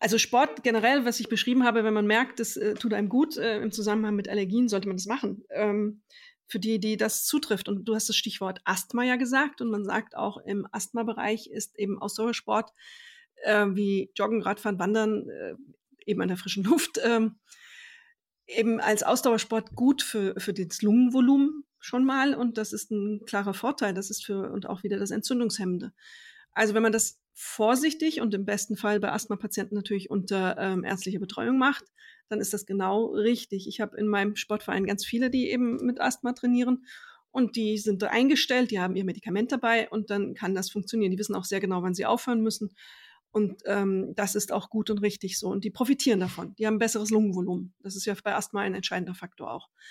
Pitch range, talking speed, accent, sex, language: 200-245 Hz, 200 wpm, German, female, German